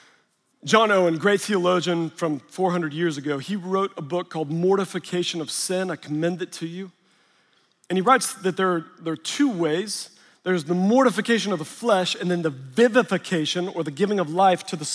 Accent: American